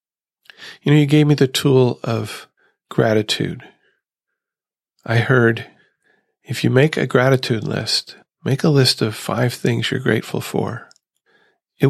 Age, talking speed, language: 40-59, 135 wpm, English